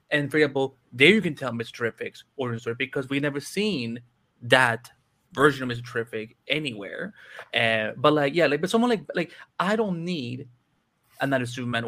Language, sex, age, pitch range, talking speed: English, male, 20-39, 125-190 Hz, 175 wpm